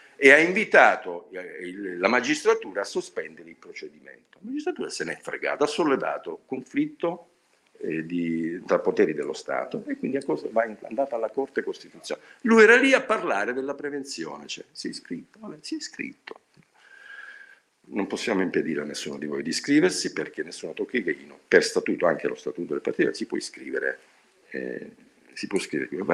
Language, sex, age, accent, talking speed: Italian, male, 50-69, native, 165 wpm